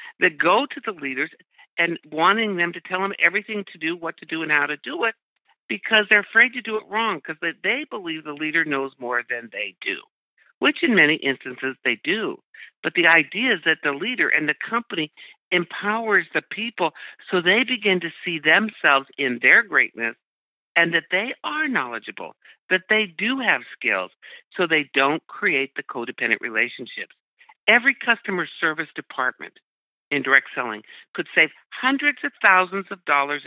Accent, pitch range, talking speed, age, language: American, 145-215 Hz, 175 wpm, 60-79, English